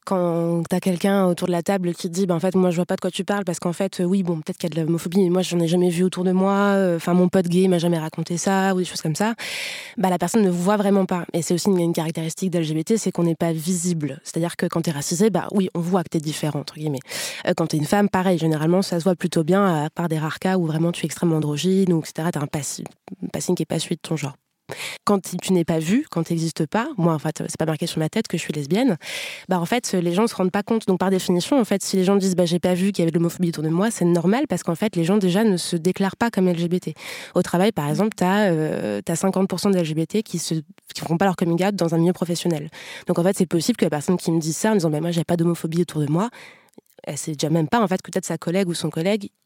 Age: 20-39